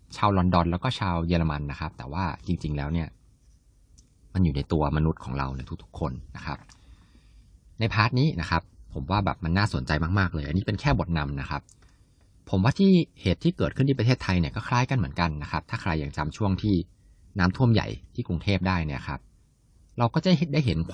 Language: Thai